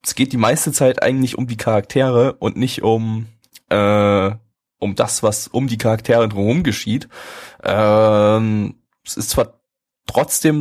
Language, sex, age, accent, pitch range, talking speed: German, male, 20-39, German, 100-125 Hz, 145 wpm